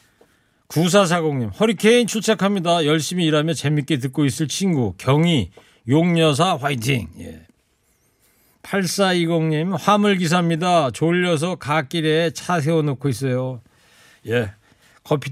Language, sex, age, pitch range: Korean, male, 40-59, 135-180 Hz